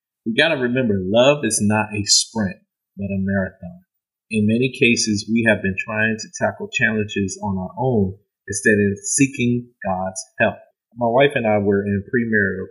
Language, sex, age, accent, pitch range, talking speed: English, male, 30-49, American, 95-125 Hz, 170 wpm